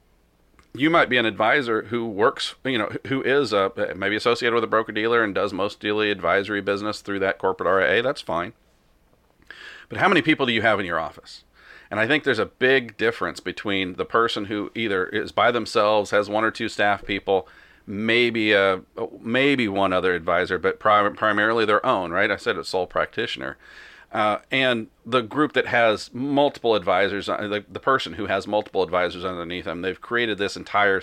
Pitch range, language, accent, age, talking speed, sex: 100-120 Hz, English, American, 40-59, 185 wpm, male